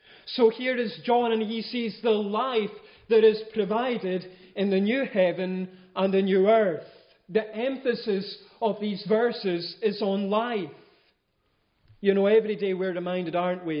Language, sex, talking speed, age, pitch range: English, male, 155 wpm, 40-59, 160-195 Hz